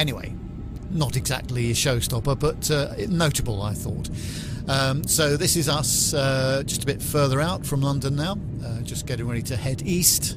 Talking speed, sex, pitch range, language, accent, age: 180 wpm, male, 125-150 Hz, English, British, 50-69